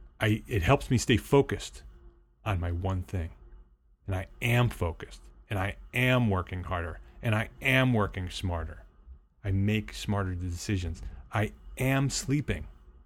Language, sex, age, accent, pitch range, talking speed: English, male, 30-49, American, 80-115 Hz, 140 wpm